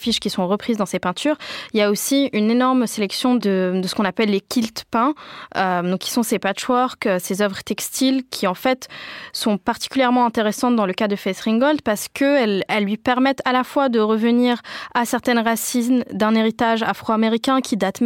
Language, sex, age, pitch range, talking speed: French, female, 20-39, 210-255 Hz, 195 wpm